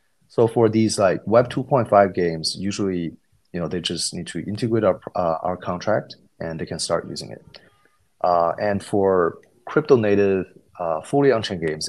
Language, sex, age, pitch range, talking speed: English, male, 30-49, 85-105 Hz, 185 wpm